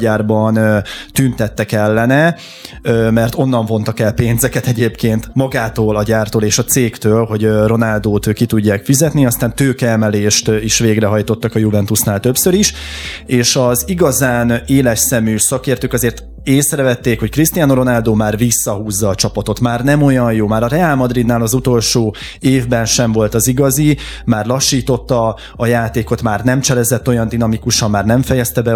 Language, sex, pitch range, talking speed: Hungarian, male, 110-130 Hz, 150 wpm